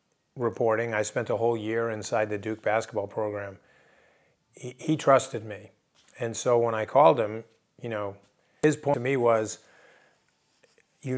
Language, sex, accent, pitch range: German, male, American, 110-125 Hz